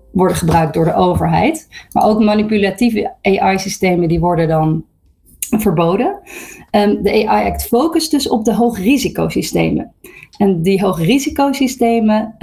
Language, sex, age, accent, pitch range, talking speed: Dutch, female, 40-59, Dutch, 180-220 Hz, 110 wpm